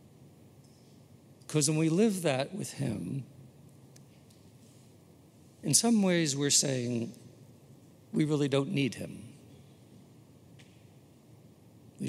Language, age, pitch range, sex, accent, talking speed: English, 60-79, 120-145 Hz, male, American, 90 wpm